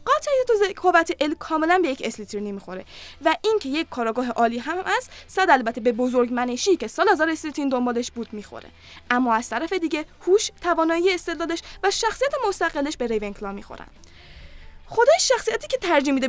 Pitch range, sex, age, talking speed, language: 240-355 Hz, female, 10-29, 165 wpm, Persian